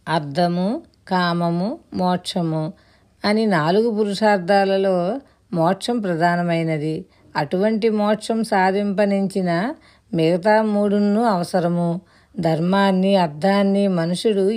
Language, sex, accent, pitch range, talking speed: Telugu, female, native, 170-205 Hz, 70 wpm